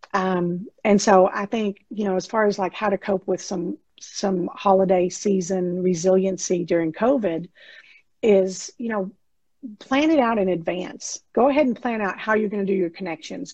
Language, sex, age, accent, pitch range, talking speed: English, female, 50-69, American, 190-220 Hz, 185 wpm